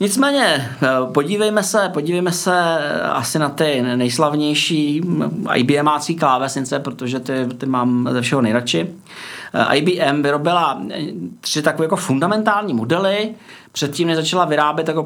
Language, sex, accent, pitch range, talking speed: Czech, male, native, 135-180 Hz, 115 wpm